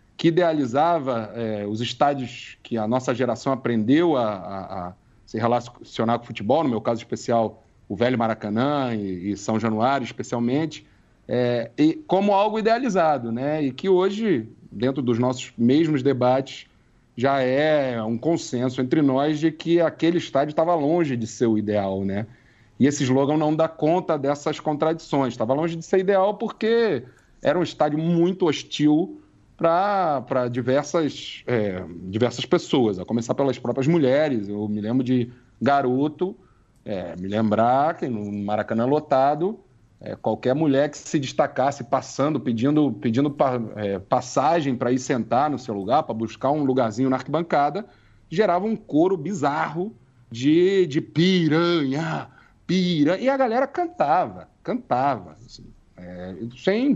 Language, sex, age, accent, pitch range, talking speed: Portuguese, male, 40-59, Brazilian, 115-160 Hz, 140 wpm